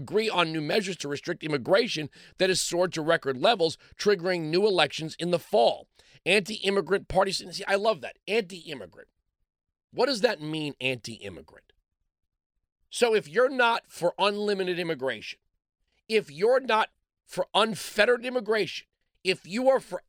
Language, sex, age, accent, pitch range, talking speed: English, male, 40-59, American, 155-195 Hz, 140 wpm